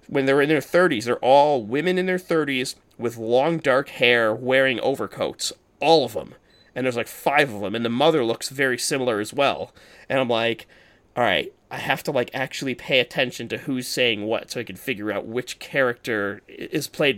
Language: English